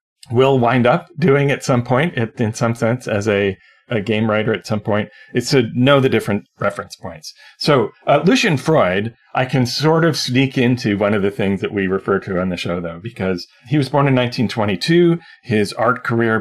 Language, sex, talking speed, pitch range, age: English, male, 205 wpm, 105-135 Hz, 40-59